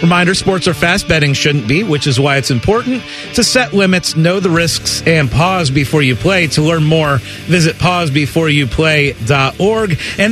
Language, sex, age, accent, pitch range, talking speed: English, male, 40-59, American, 145-200 Hz, 170 wpm